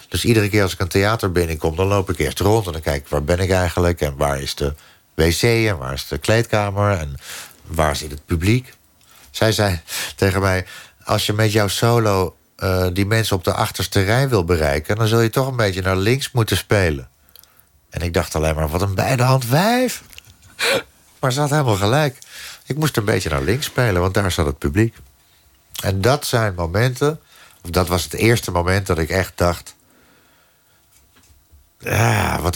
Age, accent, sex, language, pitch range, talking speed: 50-69, Dutch, male, Dutch, 80-100 Hz, 195 wpm